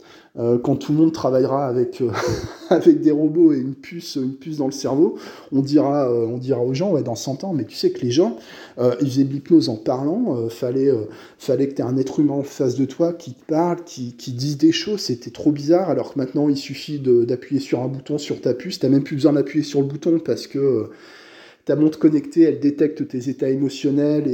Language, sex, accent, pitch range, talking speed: French, male, French, 130-160 Hz, 250 wpm